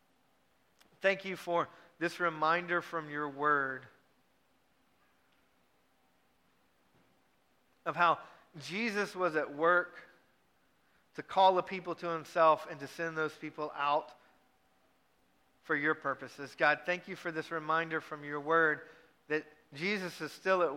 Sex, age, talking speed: male, 40-59, 125 wpm